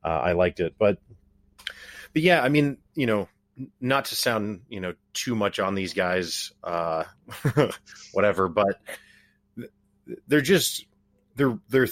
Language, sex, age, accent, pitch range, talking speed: English, male, 30-49, American, 95-115 Hz, 140 wpm